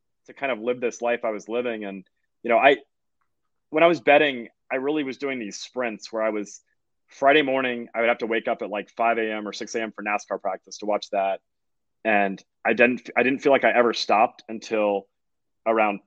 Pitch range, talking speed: 105-120 Hz, 215 wpm